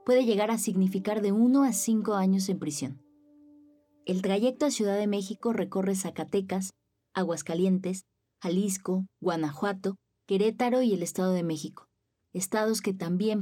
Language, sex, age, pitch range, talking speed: Spanish, female, 20-39, 175-210 Hz, 140 wpm